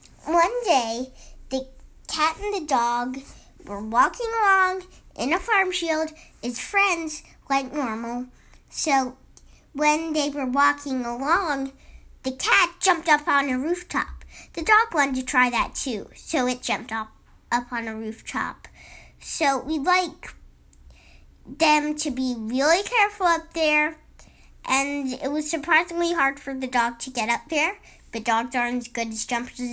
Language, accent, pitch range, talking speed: English, American, 250-330 Hz, 150 wpm